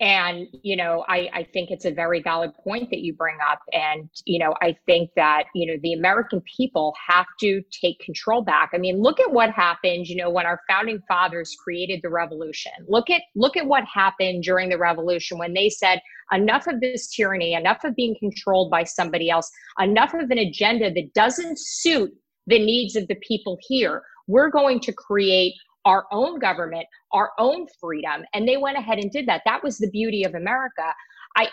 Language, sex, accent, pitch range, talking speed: English, female, American, 175-235 Hz, 200 wpm